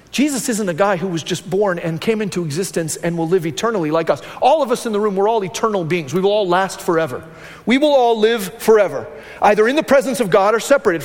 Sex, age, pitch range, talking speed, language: male, 40-59, 200-270 Hz, 250 wpm, English